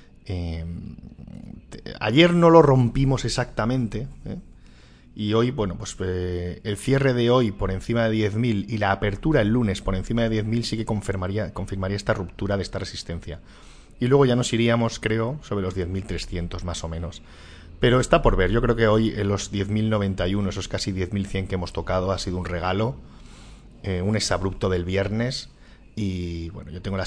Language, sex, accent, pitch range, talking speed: Spanish, male, Spanish, 90-110 Hz, 175 wpm